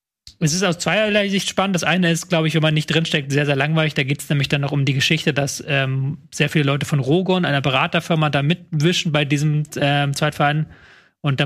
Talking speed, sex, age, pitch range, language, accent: 230 wpm, male, 30-49, 145-170 Hz, German, German